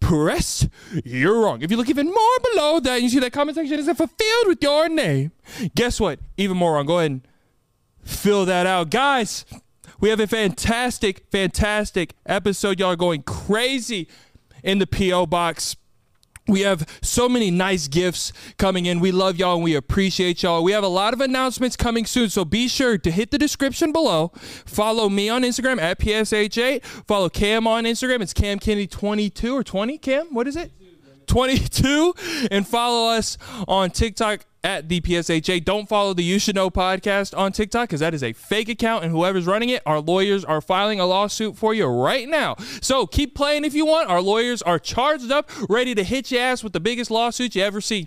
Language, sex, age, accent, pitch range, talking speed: English, male, 20-39, American, 175-245 Hz, 195 wpm